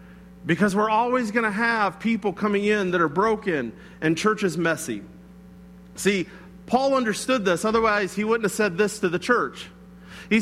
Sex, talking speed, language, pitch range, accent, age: male, 175 wpm, English, 190-265 Hz, American, 40-59